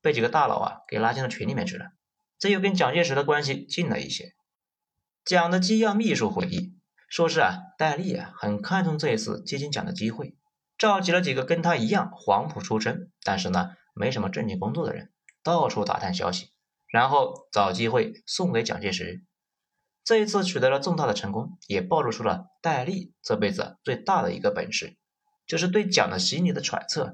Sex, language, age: male, Chinese, 30-49